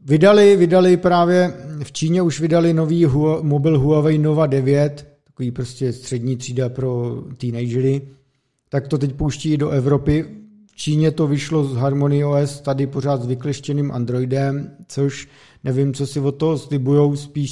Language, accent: Czech, native